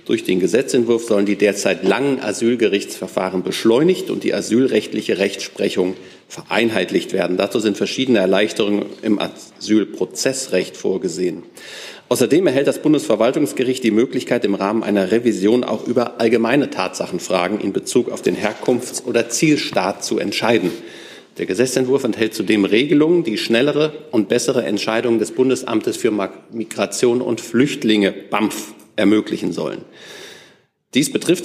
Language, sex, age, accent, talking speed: German, male, 40-59, German, 125 wpm